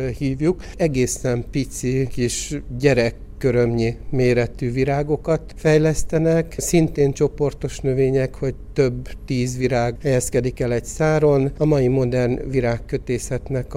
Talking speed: 100 wpm